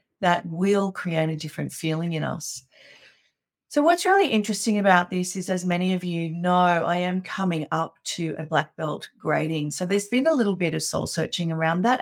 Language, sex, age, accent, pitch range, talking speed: English, female, 40-59, Australian, 165-195 Hz, 200 wpm